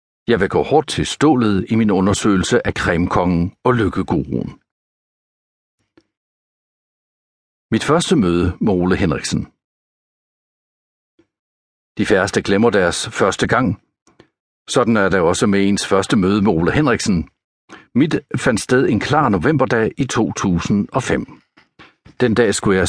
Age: 60-79